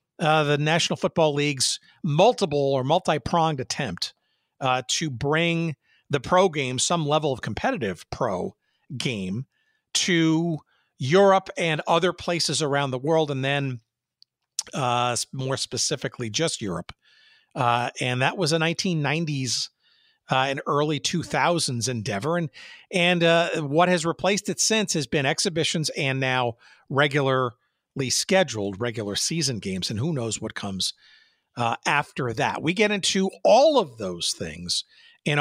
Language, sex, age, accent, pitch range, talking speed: English, male, 50-69, American, 135-185 Hz, 135 wpm